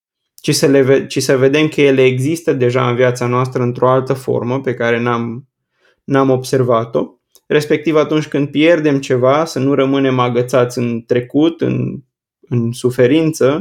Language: Romanian